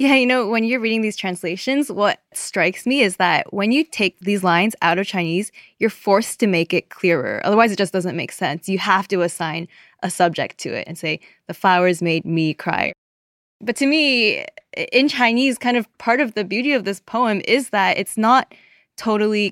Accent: American